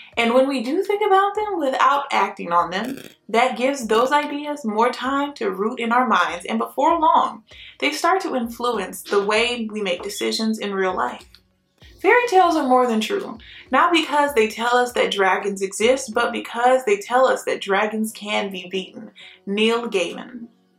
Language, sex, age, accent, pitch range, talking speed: English, female, 20-39, American, 215-285 Hz, 180 wpm